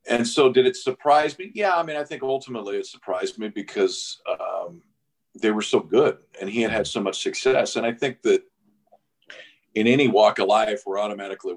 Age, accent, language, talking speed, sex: 40-59, American, English, 200 wpm, male